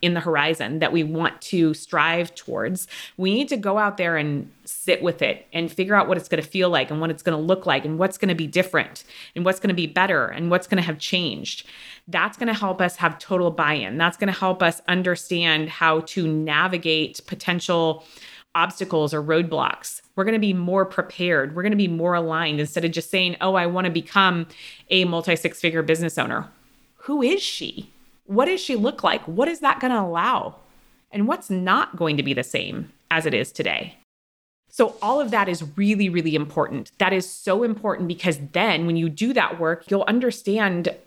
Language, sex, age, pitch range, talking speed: English, female, 20-39, 160-190 Hz, 215 wpm